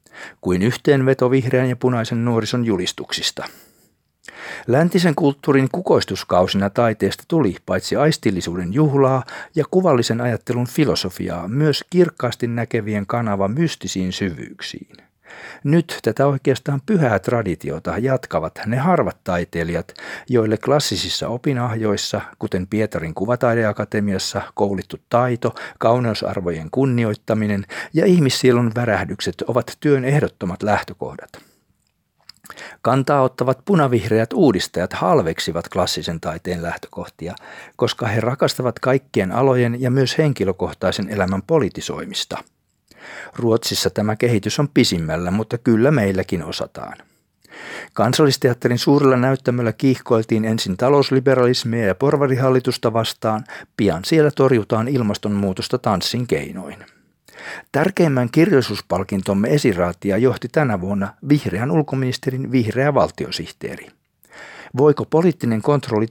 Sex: male